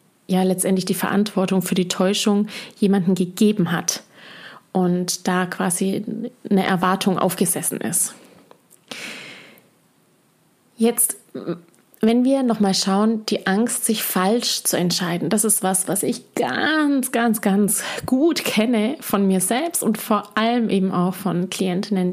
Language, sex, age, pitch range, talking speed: German, female, 20-39, 185-220 Hz, 130 wpm